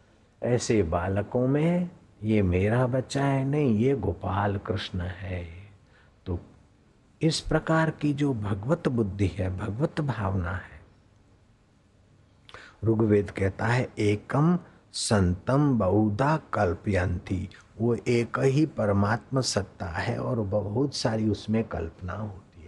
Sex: male